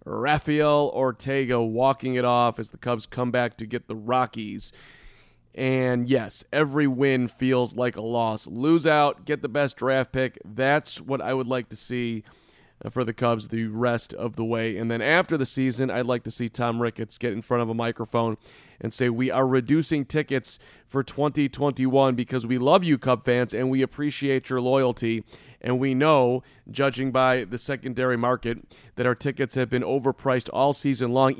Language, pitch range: English, 115-135 Hz